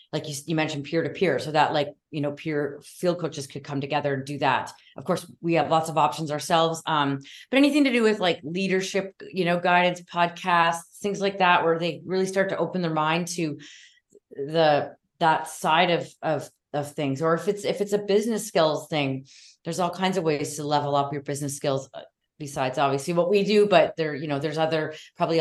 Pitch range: 150-195 Hz